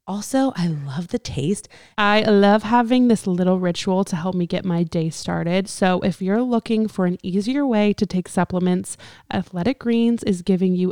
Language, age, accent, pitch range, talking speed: English, 20-39, American, 180-210 Hz, 185 wpm